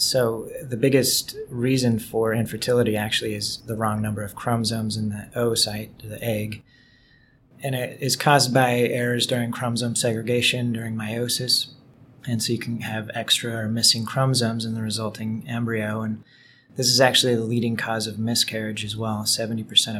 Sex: male